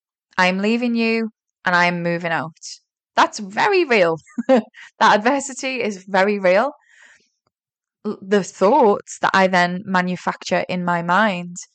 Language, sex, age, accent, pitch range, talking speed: English, female, 10-29, British, 180-225 Hz, 130 wpm